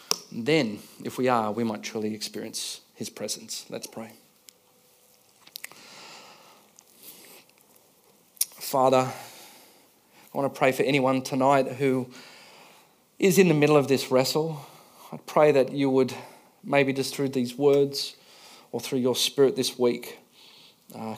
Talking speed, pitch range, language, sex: 130 wpm, 115-130 Hz, English, male